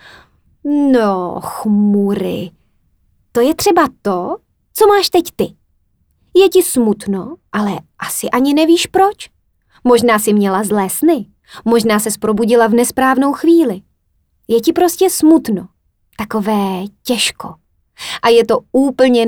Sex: female